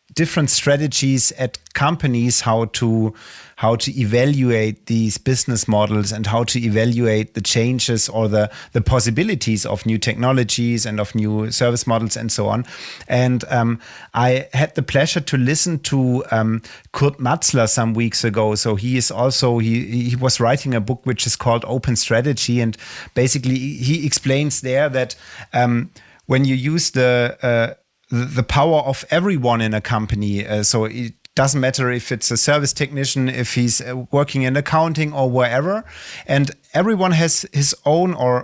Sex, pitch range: male, 115-135 Hz